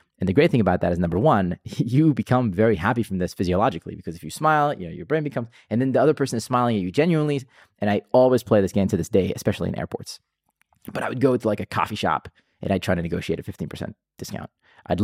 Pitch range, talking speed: 90-110 Hz, 260 wpm